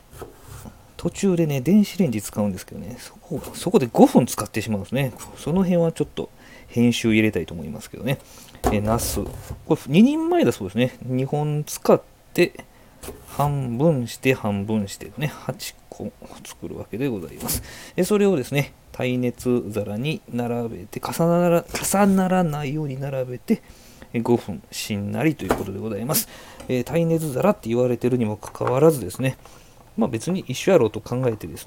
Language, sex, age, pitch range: Japanese, male, 40-59, 110-145 Hz